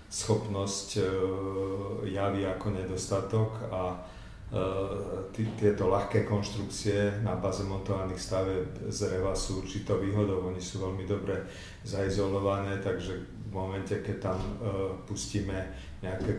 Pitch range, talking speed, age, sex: 95-105 Hz, 105 wpm, 40-59, male